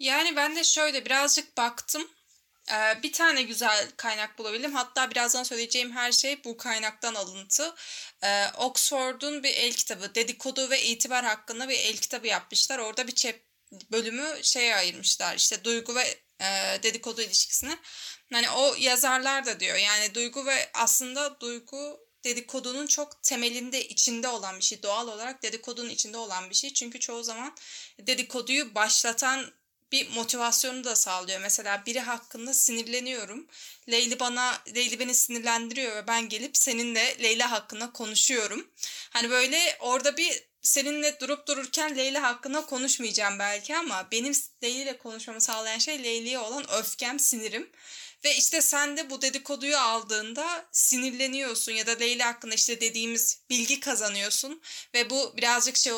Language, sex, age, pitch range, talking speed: Turkish, female, 10-29, 230-275 Hz, 140 wpm